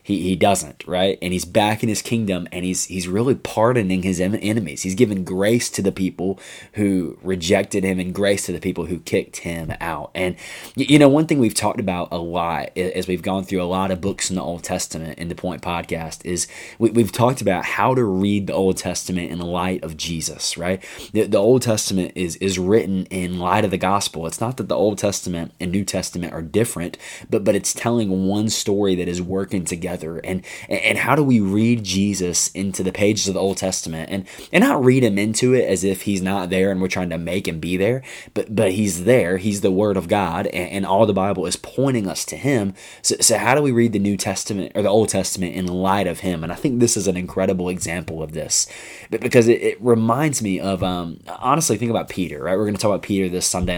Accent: American